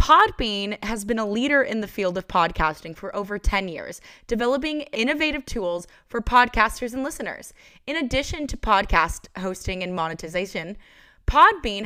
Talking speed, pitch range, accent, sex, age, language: 145 wpm, 185-235 Hz, American, female, 20-39, English